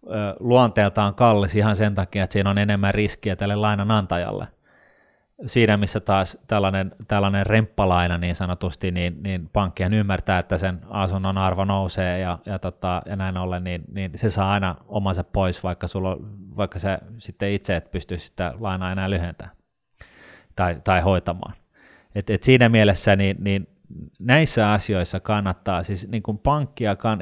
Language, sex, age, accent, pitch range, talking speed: Finnish, male, 30-49, native, 95-105 Hz, 150 wpm